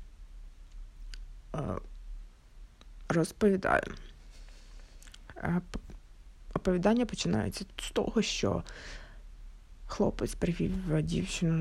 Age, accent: 20-39, native